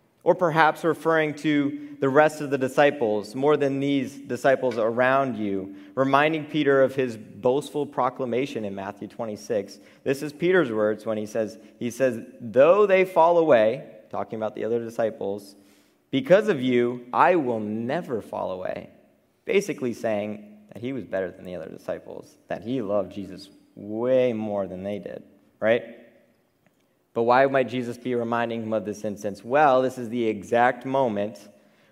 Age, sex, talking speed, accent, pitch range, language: 30-49, male, 165 wpm, American, 105-135 Hz, English